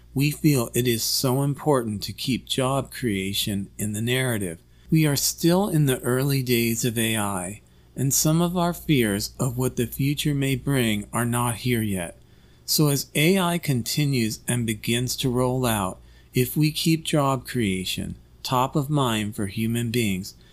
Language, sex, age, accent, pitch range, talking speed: English, male, 40-59, American, 105-135 Hz, 165 wpm